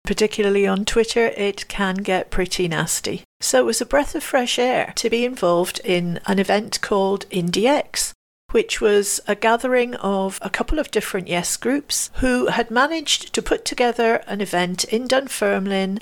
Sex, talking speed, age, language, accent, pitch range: female, 170 wpm, 50-69, English, British, 185-225 Hz